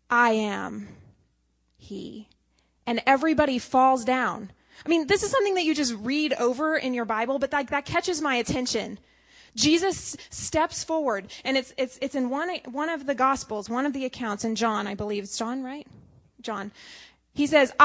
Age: 20-39